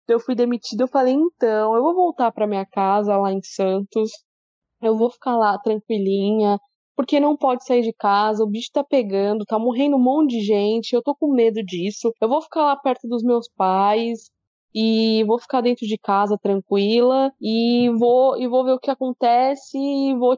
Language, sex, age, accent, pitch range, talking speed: Portuguese, female, 20-39, Brazilian, 215-260 Hz, 190 wpm